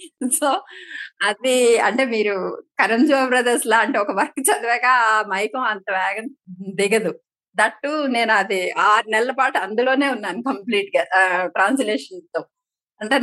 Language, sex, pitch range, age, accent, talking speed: Telugu, female, 210-285 Hz, 30-49, native, 130 wpm